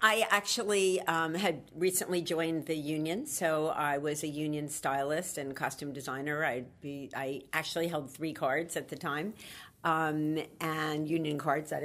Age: 50-69